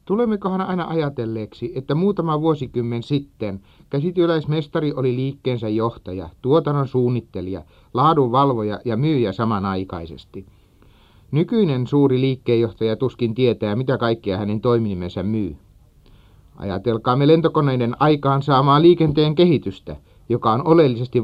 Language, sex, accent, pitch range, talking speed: Finnish, male, native, 105-145 Hz, 100 wpm